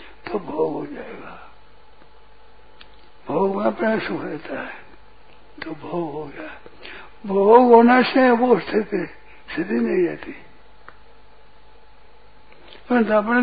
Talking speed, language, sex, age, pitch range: 90 wpm, Hindi, male, 60-79, 190-245 Hz